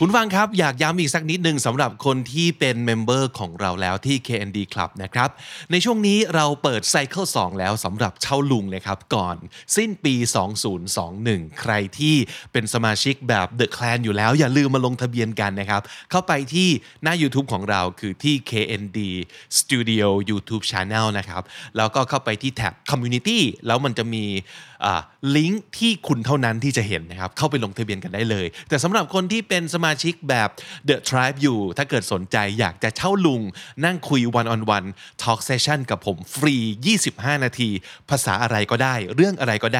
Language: Thai